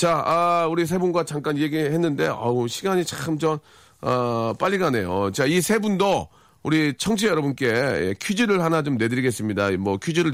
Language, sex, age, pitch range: Korean, male, 40-59, 125-190 Hz